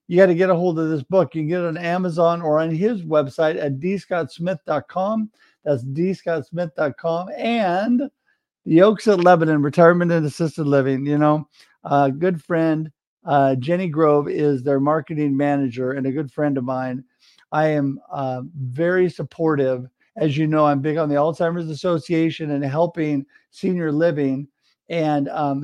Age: 50-69